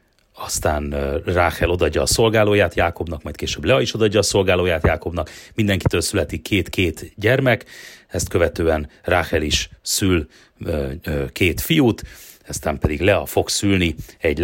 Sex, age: male, 30-49